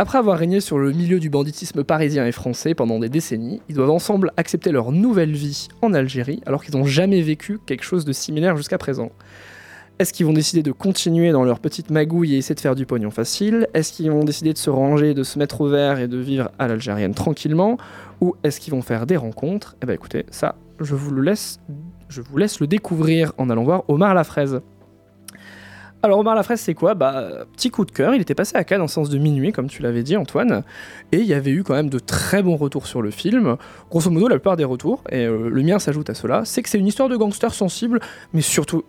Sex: male